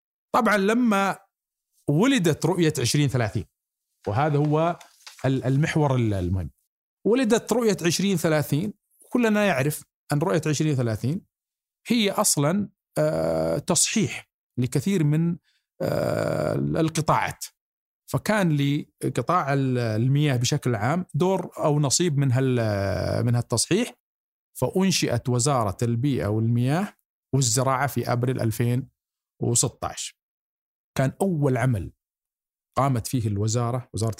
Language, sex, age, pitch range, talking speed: Arabic, male, 50-69, 125-175 Hz, 85 wpm